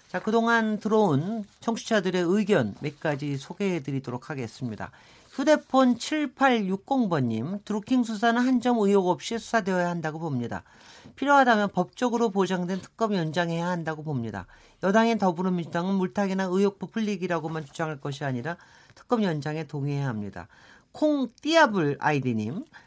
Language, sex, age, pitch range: Korean, male, 40-59, 150-225 Hz